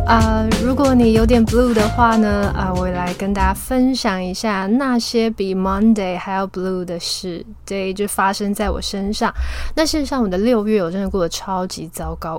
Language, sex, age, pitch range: Chinese, female, 20-39, 185-225 Hz